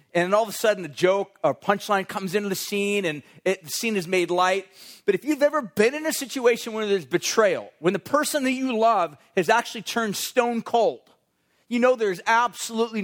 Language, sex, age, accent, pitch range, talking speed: English, male, 40-59, American, 175-230 Hz, 210 wpm